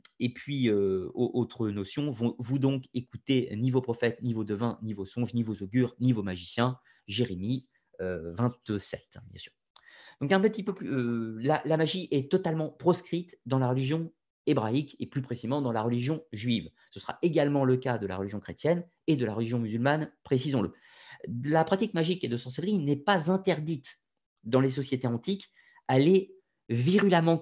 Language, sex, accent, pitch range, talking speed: French, male, French, 120-165 Hz, 185 wpm